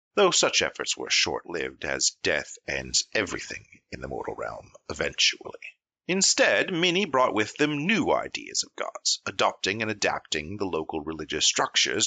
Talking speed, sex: 150 wpm, male